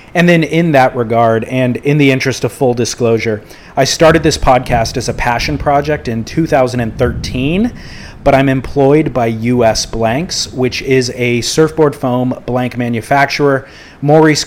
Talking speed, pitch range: 150 wpm, 120-140 Hz